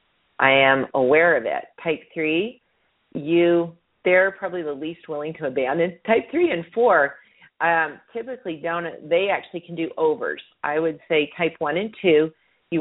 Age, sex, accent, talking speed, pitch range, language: 40-59, female, American, 155 wpm, 140-175 Hz, English